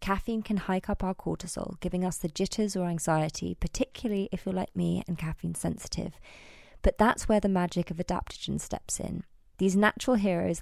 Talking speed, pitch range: 180 wpm, 165-195 Hz